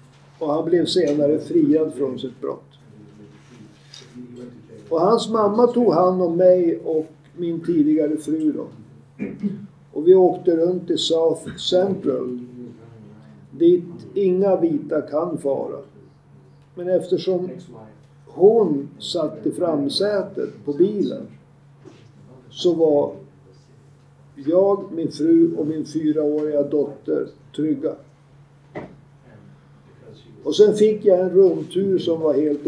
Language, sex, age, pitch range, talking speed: Swedish, male, 50-69, 140-190 Hz, 110 wpm